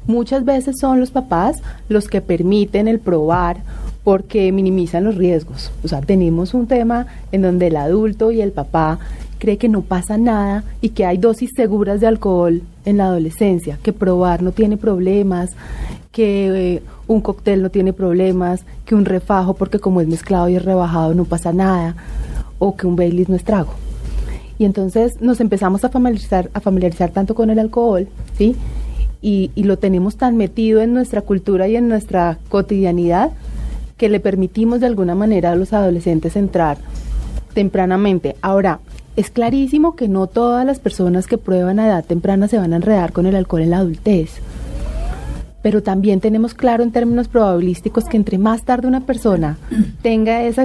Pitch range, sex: 180-220 Hz, female